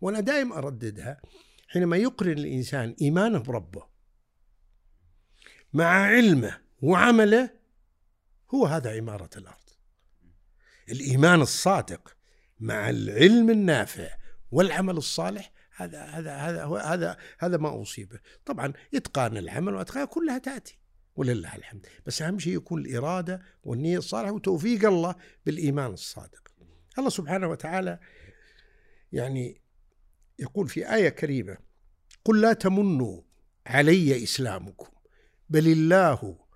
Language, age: Arabic, 60-79